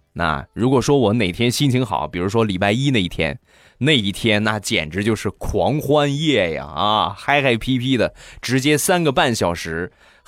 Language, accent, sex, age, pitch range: Chinese, native, male, 20-39, 95-130 Hz